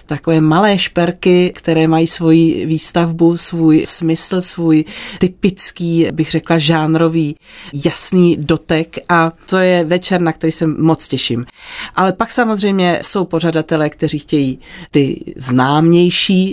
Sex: female